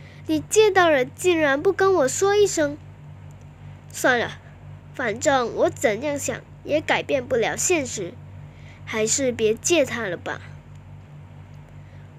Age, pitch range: 10-29, 260-350 Hz